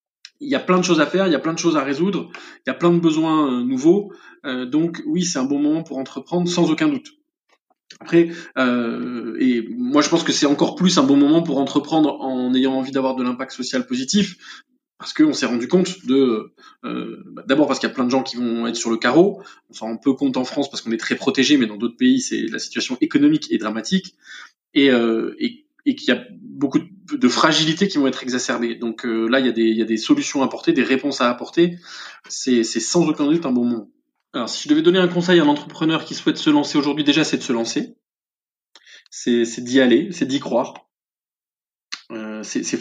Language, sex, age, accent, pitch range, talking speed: French, male, 20-39, French, 125-190 Hz, 240 wpm